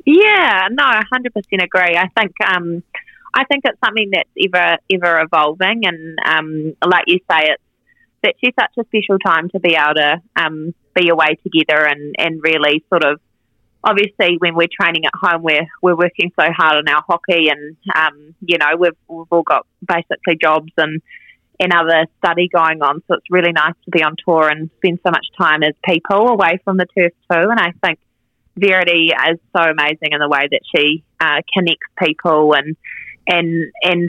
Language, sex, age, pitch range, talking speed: English, female, 20-39, 155-180 Hz, 190 wpm